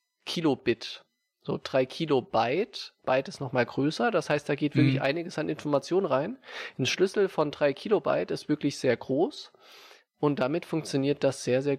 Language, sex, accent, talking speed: German, male, German, 165 wpm